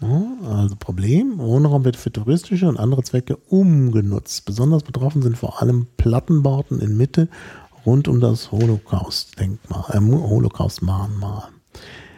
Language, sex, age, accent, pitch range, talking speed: German, male, 50-69, German, 105-140 Hz, 120 wpm